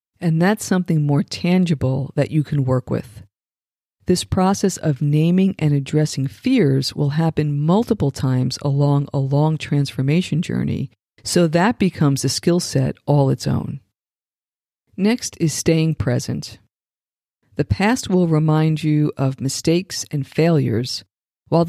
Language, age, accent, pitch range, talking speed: English, 50-69, American, 135-175 Hz, 135 wpm